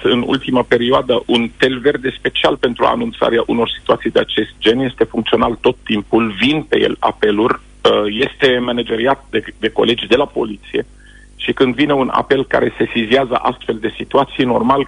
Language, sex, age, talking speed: Romanian, male, 40-59, 170 wpm